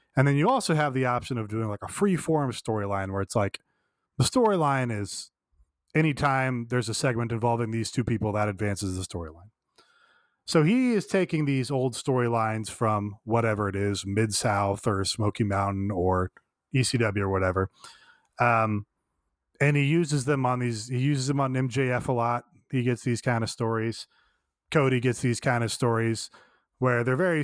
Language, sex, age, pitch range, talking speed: English, male, 30-49, 110-145 Hz, 175 wpm